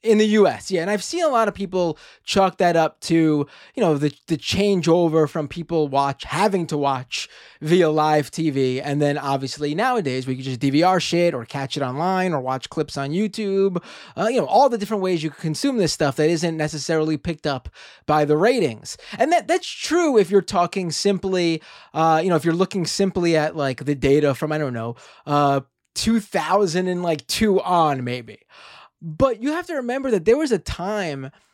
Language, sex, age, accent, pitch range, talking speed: English, male, 20-39, American, 150-205 Hz, 205 wpm